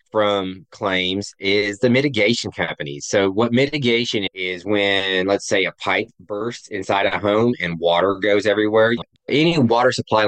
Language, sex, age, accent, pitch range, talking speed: English, male, 20-39, American, 95-115 Hz, 150 wpm